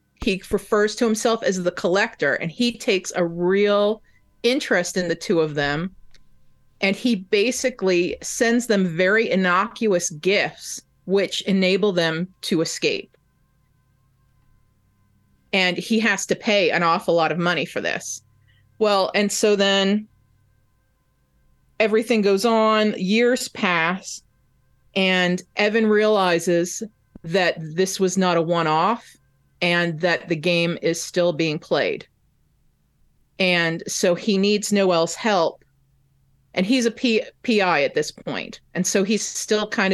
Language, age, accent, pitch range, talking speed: English, 30-49, American, 165-210 Hz, 130 wpm